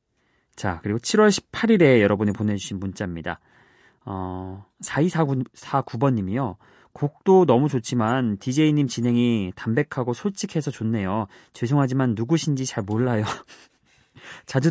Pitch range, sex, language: 110-155 Hz, male, Korean